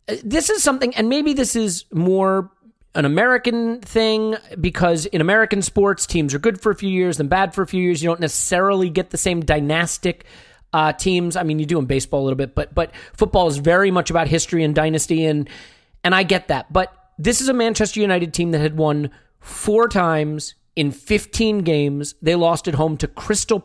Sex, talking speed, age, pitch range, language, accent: male, 210 wpm, 40-59, 155-205 Hz, English, American